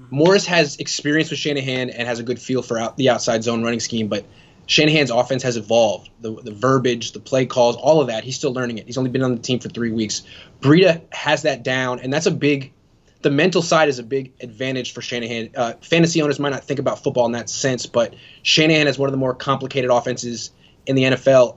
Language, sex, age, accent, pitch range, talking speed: English, male, 20-39, American, 120-145 Hz, 235 wpm